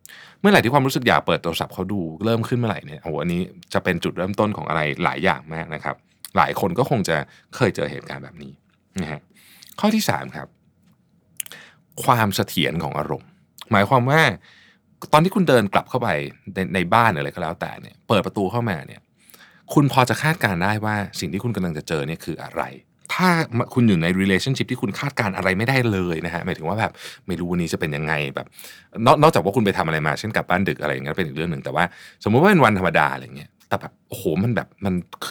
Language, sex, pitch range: Thai, male, 90-135 Hz